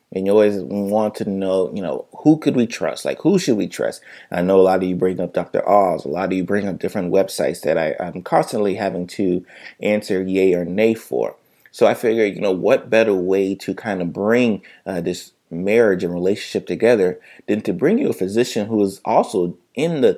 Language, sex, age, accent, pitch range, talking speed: English, male, 30-49, American, 95-110 Hz, 220 wpm